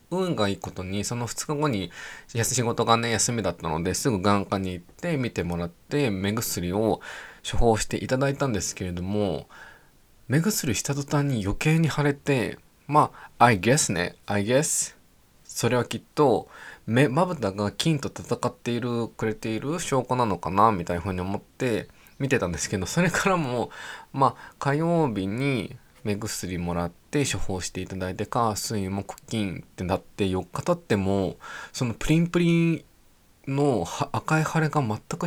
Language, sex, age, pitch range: Japanese, male, 20-39, 100-155 Hz